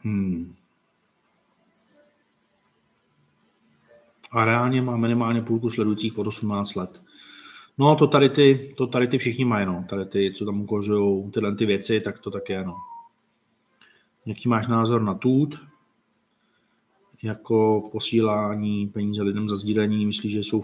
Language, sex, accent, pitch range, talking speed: Czech, male, native, 105-115 Hz, 135 wpm